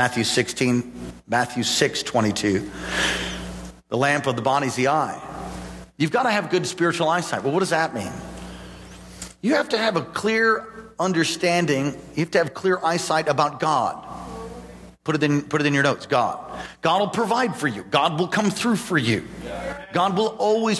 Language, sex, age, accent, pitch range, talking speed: English, male, 50-69, American, 110-170 Hz, 180 wpm